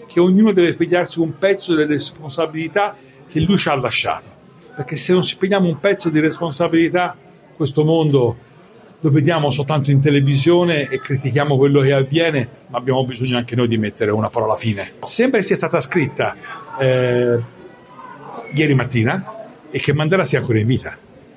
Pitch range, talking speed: 125-180 Hz, 165 wpm